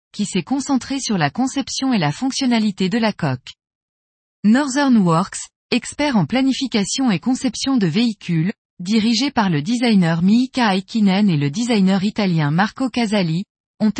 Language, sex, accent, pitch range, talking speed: French, female, French, 185-245 Hz, 145 wpm